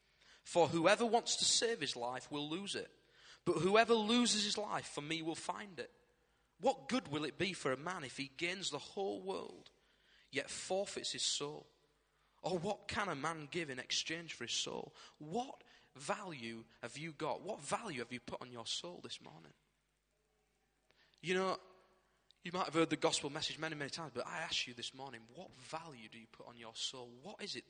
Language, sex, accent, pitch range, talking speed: English, male, British, 125-180 Hz, 200 wpm